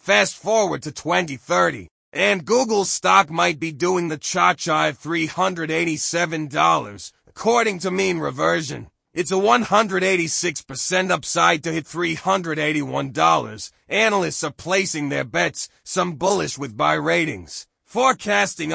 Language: English